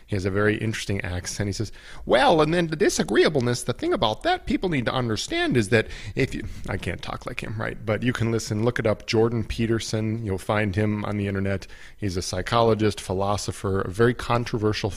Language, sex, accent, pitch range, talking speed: English, male, American, 95-110 Hz, 215 wpm